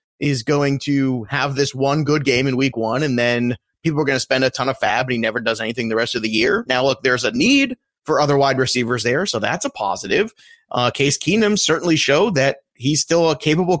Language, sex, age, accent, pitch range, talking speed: English, male, 30-49, American, 125-165 Hz, 245 wpm